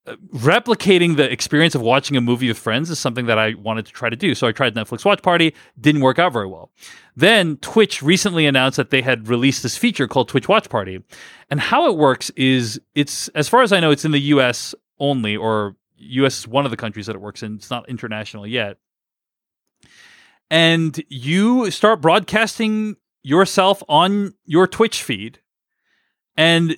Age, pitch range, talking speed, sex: 30-49, 125-185 Hz, 195 wpm, male